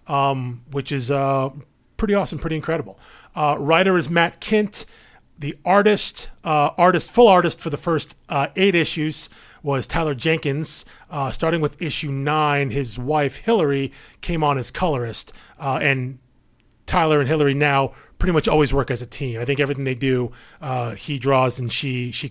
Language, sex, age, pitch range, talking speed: English, male, 30-49, 135-165 Hz, 170 wpm